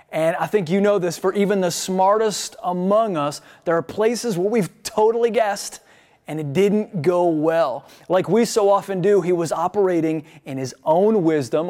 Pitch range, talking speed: 165-215 Hz, 185 wpm